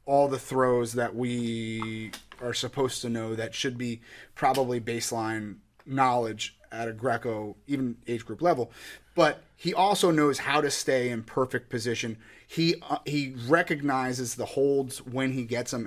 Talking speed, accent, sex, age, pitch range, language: 160 wpm, American, male, 30-49, 115-140 Hz, English